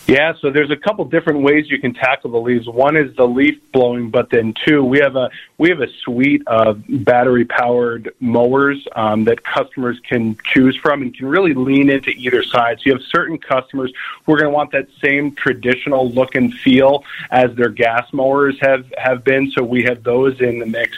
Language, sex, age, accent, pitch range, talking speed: English, male, 40-59, American, 125-140 Hz, 210 wpm